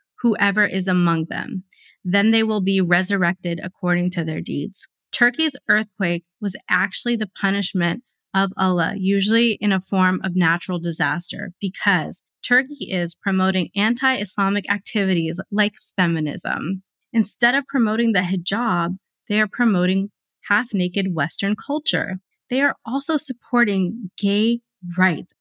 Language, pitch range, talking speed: English, 185-230 Hz, 125 wpm